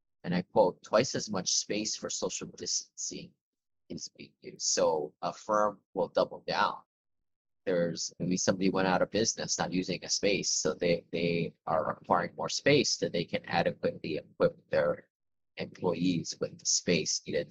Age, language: 20-39, English